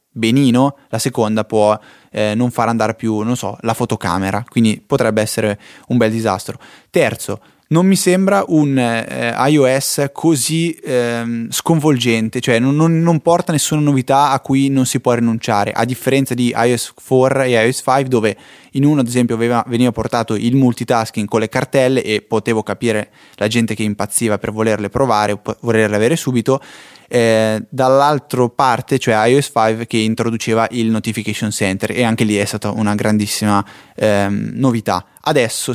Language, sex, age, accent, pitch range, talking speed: Italian, male, 20-39, native, 110-130 Hz, 165 wpm